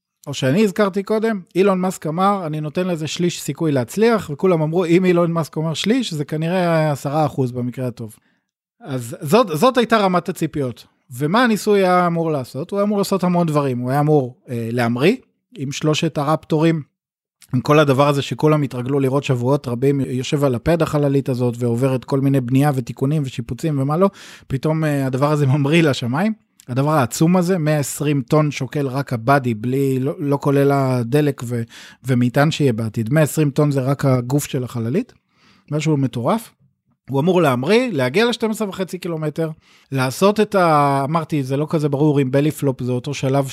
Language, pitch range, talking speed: Hebrew, 135-175 Hz, 170 wpm